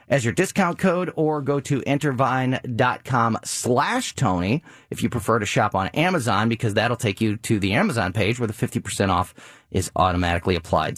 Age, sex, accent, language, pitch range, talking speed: 30-49, male, American, English, 115-160 Hz, 195 wpm